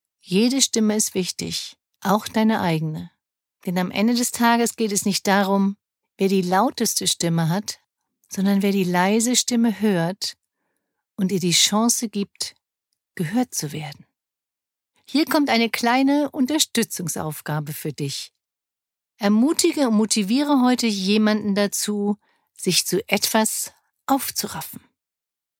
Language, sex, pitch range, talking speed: German, female, 185-245 Hz, 120 wpm